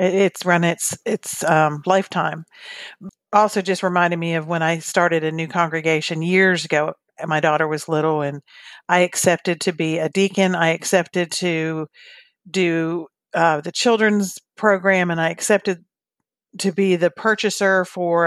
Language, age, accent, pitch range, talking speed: English, 50-69, American, 165-195 Hz, 150 wpm